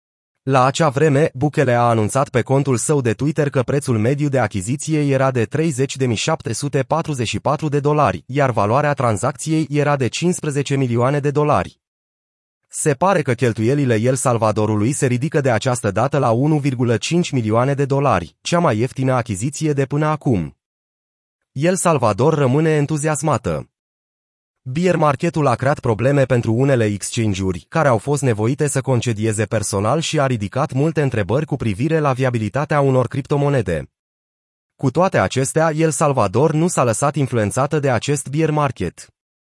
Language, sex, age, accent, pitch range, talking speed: Romanian, male, 30-49, native, 115-150 Hz, 145 wpm